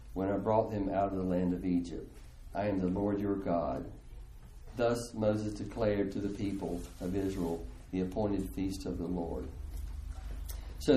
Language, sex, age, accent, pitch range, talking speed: English, male, 50-69, American, 95-130 Hz, 170 wpm